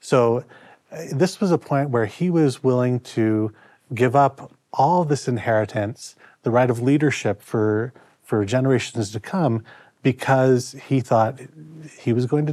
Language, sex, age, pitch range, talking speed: English, male, 30-49, 115-140 Hz, 150 wpm